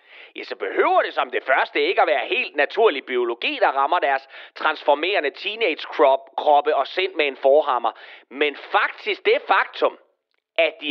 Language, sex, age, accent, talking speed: Danish, male, 30-49, native, 160 wpm